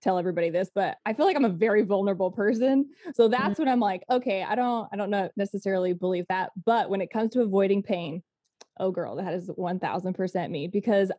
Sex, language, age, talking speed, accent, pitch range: female, English, 20-39, 210 wpm, American, 185-220 Hz